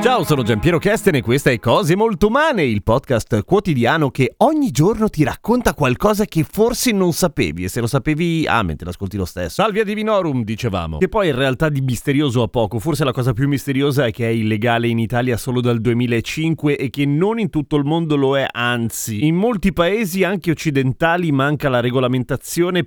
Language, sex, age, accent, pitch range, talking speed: Italian, male, 30-49, native, 125-165 Hz, 200 wpm